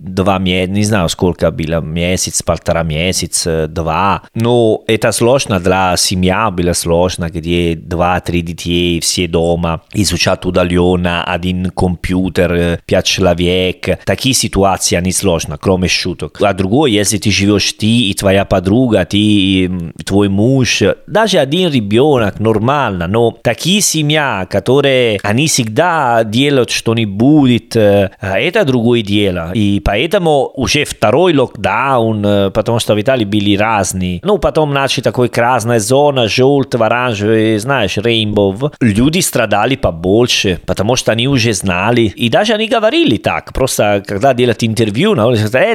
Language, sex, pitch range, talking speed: Russian, male, 95-150 Hz, 140 wpm